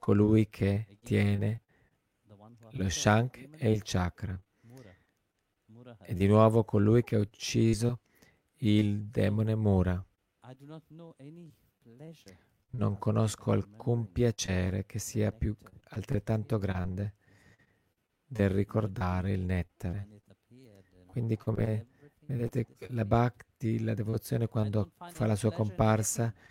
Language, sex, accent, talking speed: Italian, male, native, 95 wpm